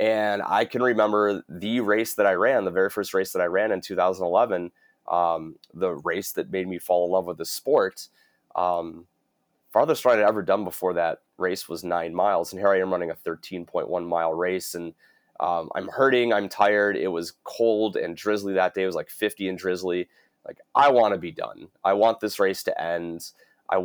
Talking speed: 205 wpm